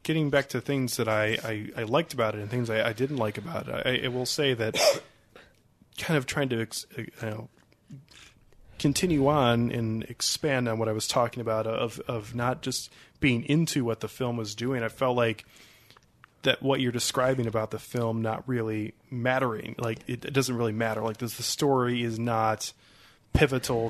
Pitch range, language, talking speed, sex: 115-135 Hz, English, 195 wpm, male